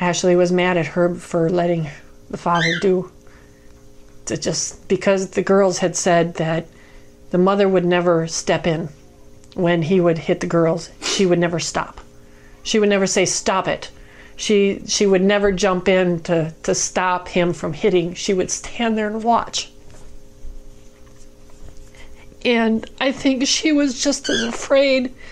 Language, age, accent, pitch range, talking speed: English, 40-59, American, 175-240 Hz, 155 wpm